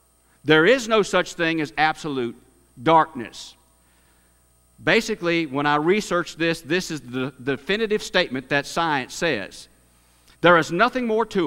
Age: 50-69